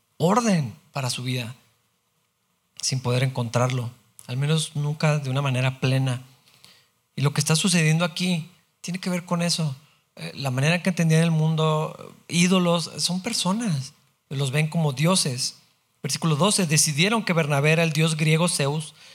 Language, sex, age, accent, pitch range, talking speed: Spanish, male, 40-59, Mexican, 135-165 Hz, 150 wpm